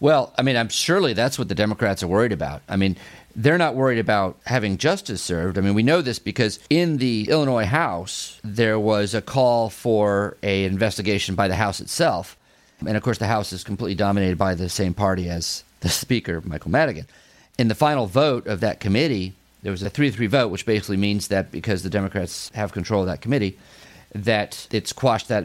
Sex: male